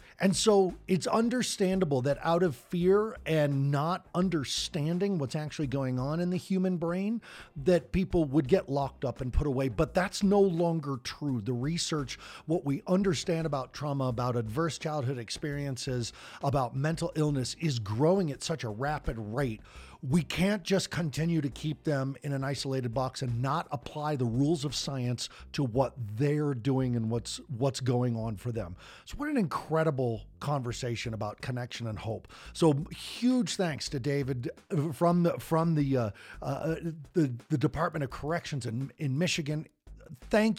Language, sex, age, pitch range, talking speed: English, male, 50-69, 125-165 Hz, 165 wpm